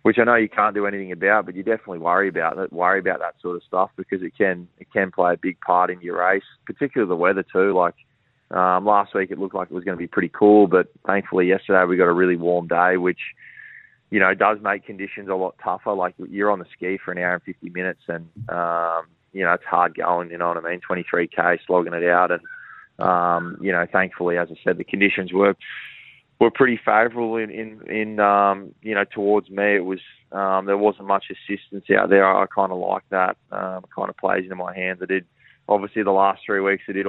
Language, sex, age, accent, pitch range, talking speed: English, male, 20-39, Australian, 90-100 Hz, 240 wpm